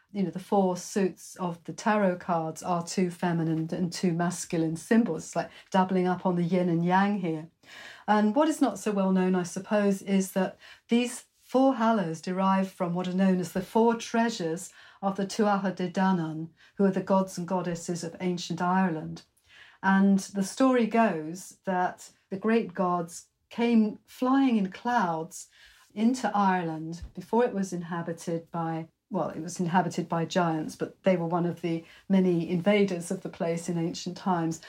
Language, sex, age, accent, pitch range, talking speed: English, female, 50-69, British, 170-200 Hz, 175 wpm